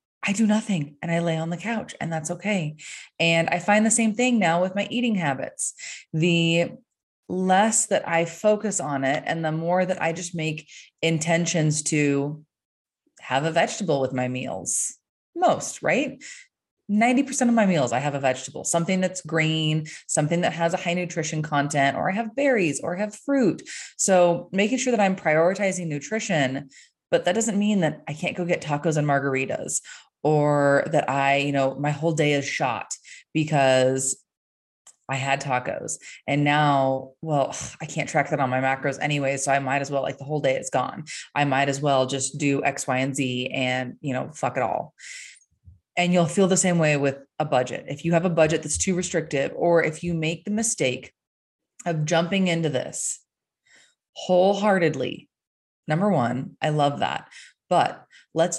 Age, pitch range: 20-39, 140-185 Hz